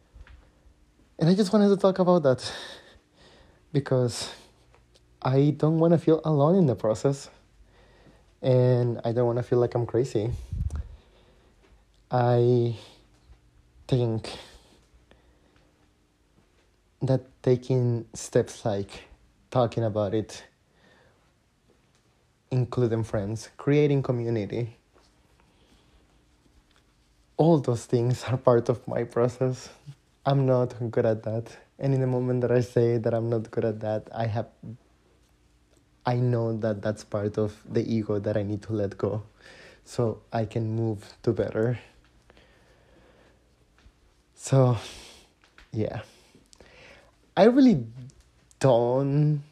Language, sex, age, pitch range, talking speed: English, male, 30-49, 100-125 Hz, 115 wpm